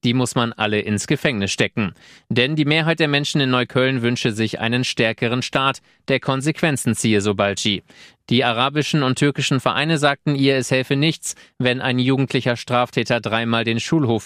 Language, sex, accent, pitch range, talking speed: German, male, German, 115-135 Hz, 175 wpm